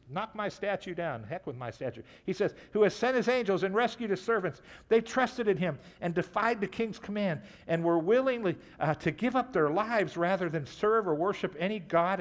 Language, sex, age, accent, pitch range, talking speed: English, male, 60-79, American, 130-195 Hz, 215 wpm